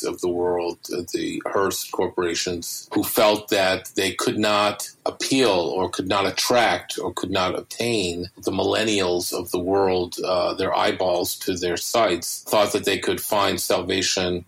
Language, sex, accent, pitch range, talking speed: English, male, American, 90-100 Hz, 160 wpm